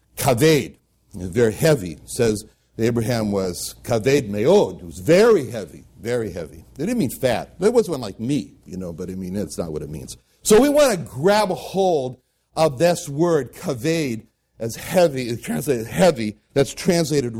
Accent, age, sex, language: American, 60-79, male, English